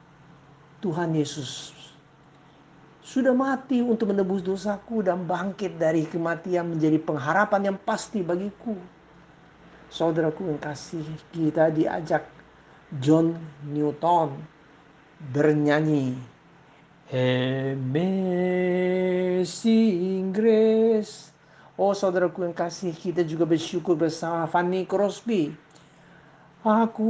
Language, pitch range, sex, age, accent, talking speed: Indonesian, 155-205 Hz, male, 50-69, native, 85 wpm